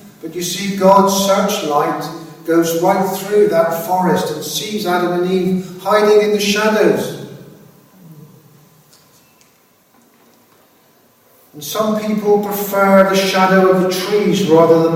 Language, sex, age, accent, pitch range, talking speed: English, male, 50-69, British, 145-175 Hz, 120 wpm